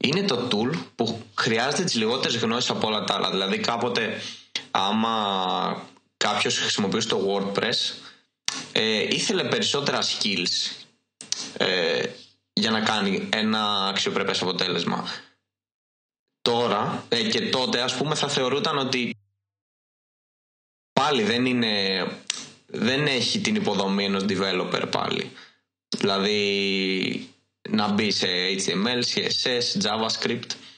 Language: Greek